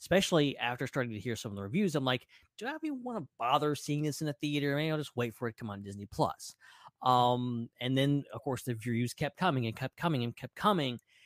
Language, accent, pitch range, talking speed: English, American, 125-180 Hz, 265 wpm